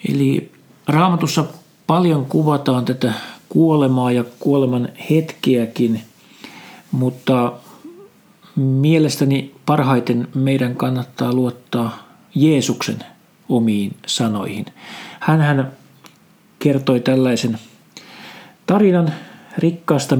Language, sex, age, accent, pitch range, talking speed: Finnish, male, 50-69, native, 125-155 Hz, 70 wpm